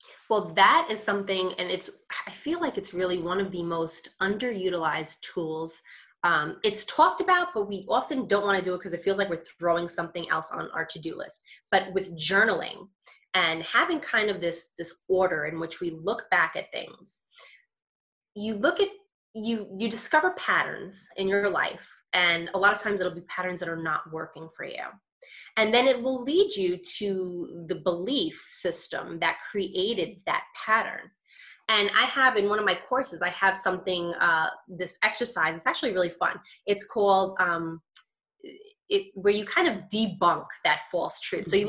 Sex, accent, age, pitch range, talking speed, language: female, American, 20-39, 175-220 Hz, 185 wpm, English